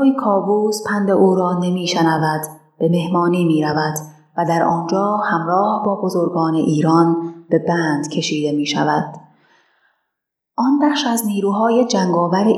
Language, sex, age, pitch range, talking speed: Persian, female, 30-49, 165-195 Hz, 125 wpm